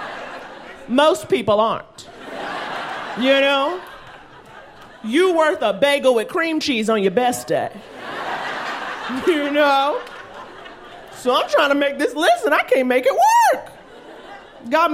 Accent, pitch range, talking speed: American, 220-305 Hz, 125 wpm